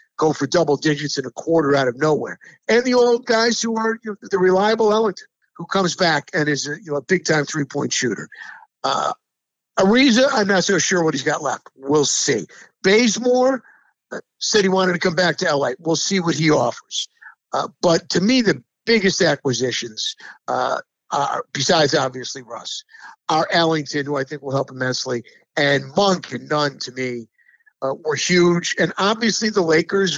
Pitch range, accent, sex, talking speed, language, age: 145-200 Hz, American, male, 185 wpm, English, 50-69